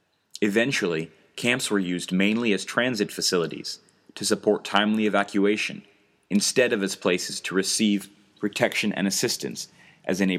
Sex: male